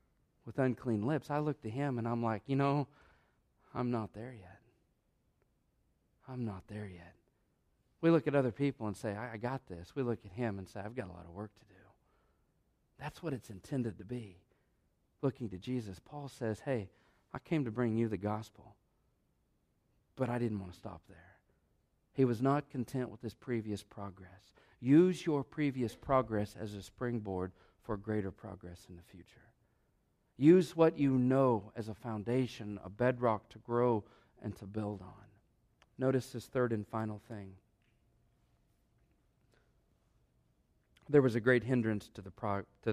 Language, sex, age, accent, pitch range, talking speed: English, male, 40-59, American, 105-130 Hz, 170 wpm